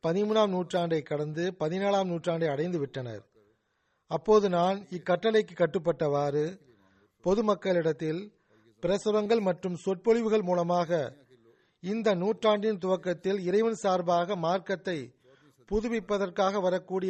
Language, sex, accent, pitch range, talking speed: Tamil, male, native, 155-205 Hz, 80 wpm